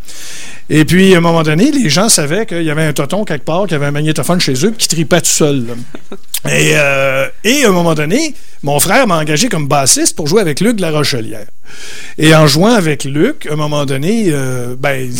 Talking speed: 230 wpm